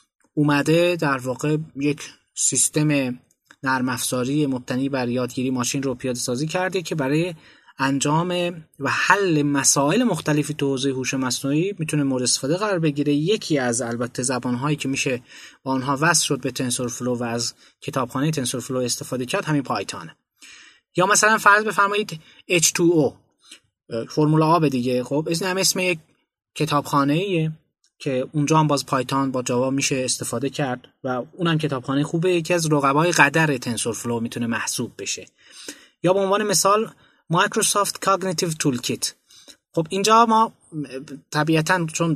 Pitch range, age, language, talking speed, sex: 135-175 Hz, 20-39, Persian, 140 wpm, male